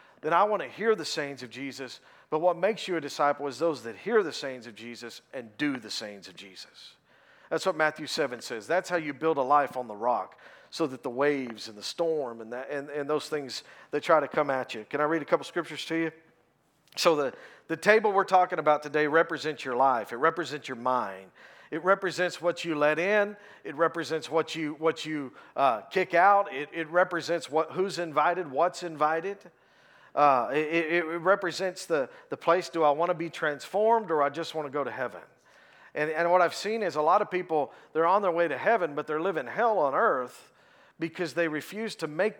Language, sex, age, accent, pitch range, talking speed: English, male, 50-69, American, 145-185 Hz, 220 wpm